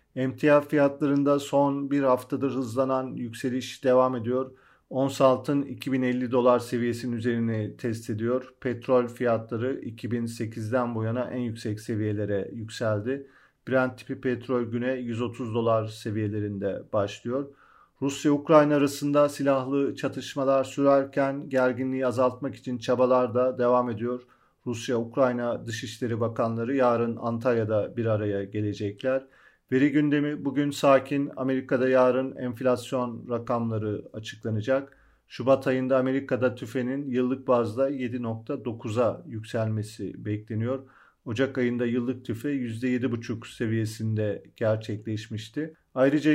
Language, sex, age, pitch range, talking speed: Turkish, male, 40-59, 115-135 Hz, 105 wpm